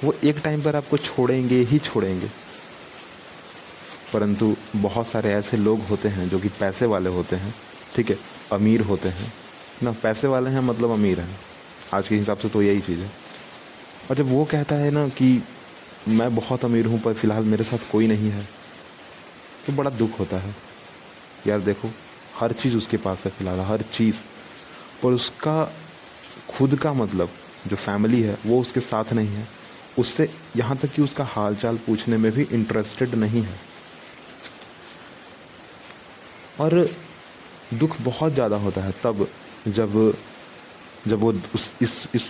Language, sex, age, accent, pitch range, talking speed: Hindi, male, 30-49, native, 105-125 Hz, 155 wpm